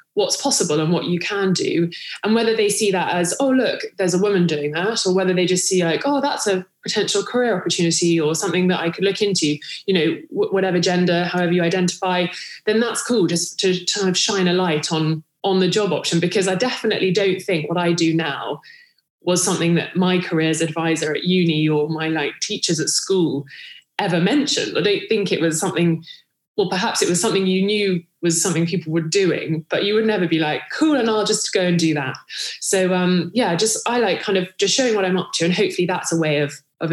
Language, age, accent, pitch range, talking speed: English, 20-39, British, 165-195 Hz, 225 wpm